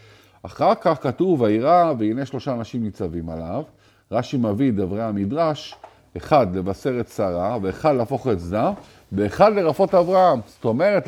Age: 50-69